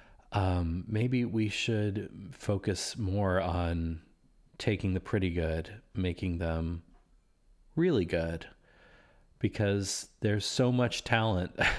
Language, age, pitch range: English, 30-49, 90-105 Hz